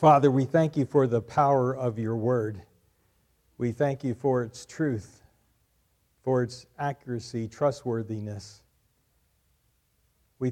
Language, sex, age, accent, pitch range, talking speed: English, male, 50-69, American, 115-150 Hz, 120 wpm